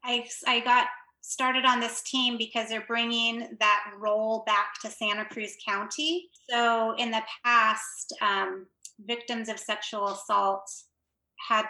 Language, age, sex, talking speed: English, 30-49, female, 140 wpm